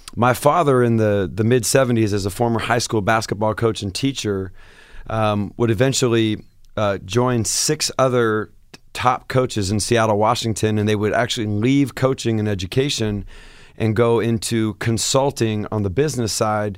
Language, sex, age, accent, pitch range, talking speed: English, male, 30-49, American, 105-120 Hz, 155 wpm